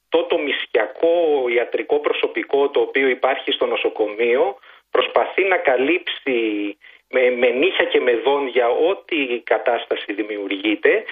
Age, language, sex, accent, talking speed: 40-59, Greek, male, native, 125 wpm